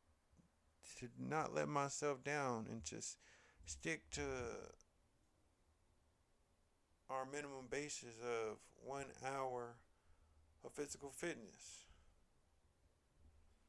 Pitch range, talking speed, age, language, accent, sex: 75-125 Hz, 80 wpm, 50-69, English, American, male